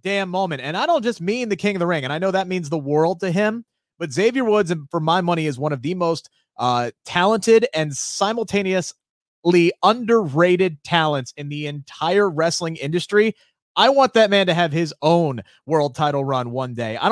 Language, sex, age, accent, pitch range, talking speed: English, male, 30-49, American, 135-180 Hz, 205 wpm